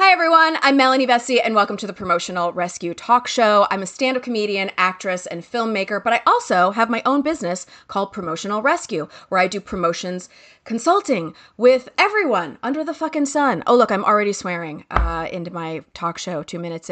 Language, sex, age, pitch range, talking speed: English, female, 30-49, 180-255 Hz, 190 wpm